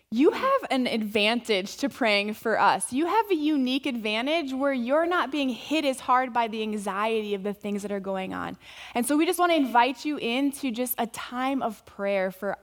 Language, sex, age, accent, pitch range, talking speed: English, female, 20-39, American, 220-275 Hz, 215 wpm